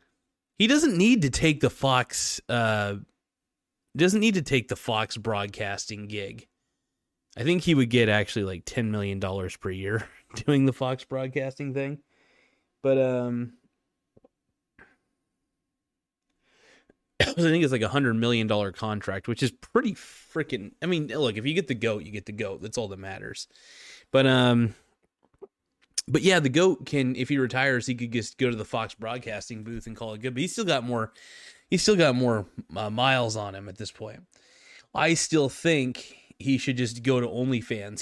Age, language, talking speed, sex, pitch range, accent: 20-39, English, 175 wpm, male, 115-160 Hz, American